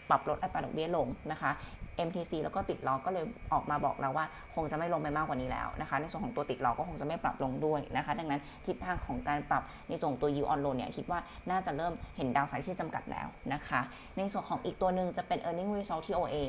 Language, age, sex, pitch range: Thai, 20-39, female, 145-180 Hz